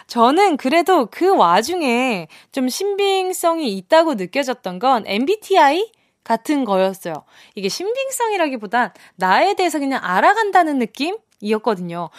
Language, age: Korean, 20-39